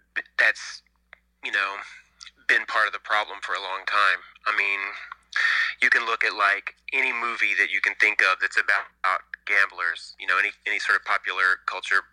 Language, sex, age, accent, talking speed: English, male, 30-49, American, 185 wpm